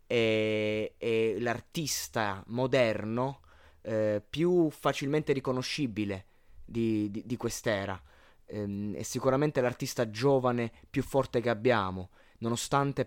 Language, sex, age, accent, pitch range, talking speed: Italian, male, 20-39, native, 105-130 Hz, 95 wpm